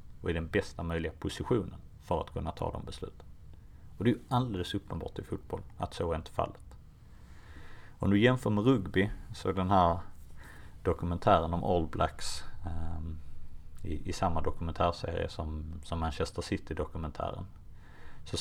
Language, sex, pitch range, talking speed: Swedish, male, 80-95 Hz, 160 wpm